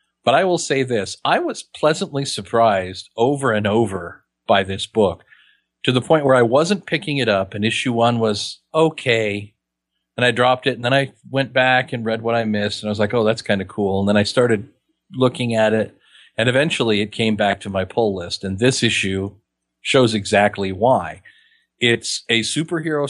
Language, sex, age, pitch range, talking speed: English, male, 40-59, 100-125 Hz, 200 wpm